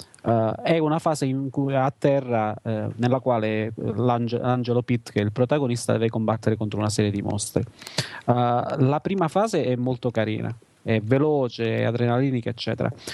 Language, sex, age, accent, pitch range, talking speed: Italian, male, 30-49, native, 115-135 Hz, 155 wpm